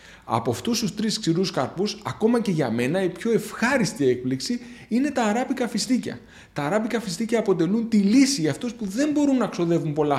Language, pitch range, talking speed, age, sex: Greek, 135-220 Hz, 190 wpm, 30-49, male